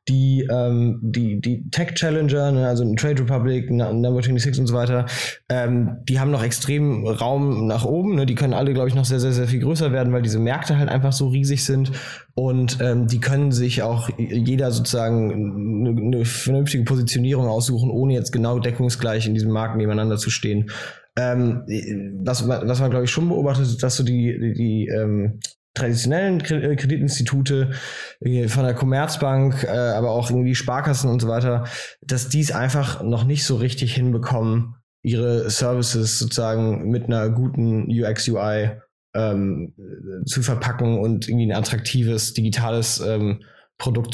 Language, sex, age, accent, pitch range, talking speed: German, male, 20-39, German, 115-130 Hz, 160 wpm